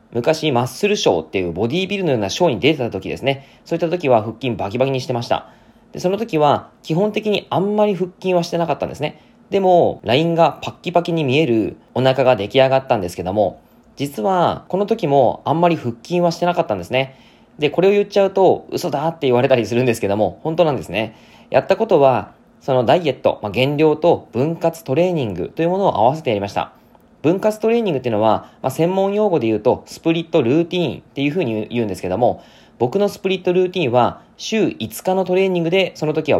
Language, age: Japanese, 20-39